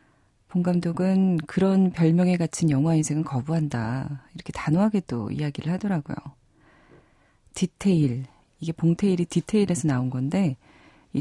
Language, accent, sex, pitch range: Korean, native, female, 135-180 Hz